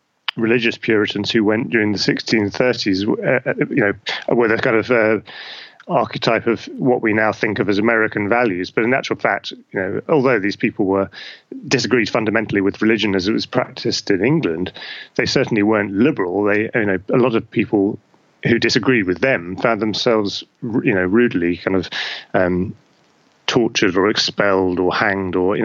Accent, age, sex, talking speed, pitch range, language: British, 30-49, male, 175 wpm, 100-125 Hz, English